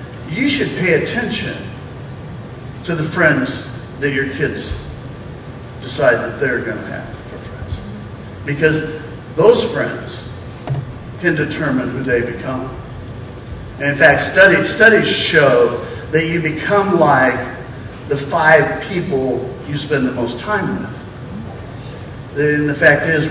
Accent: American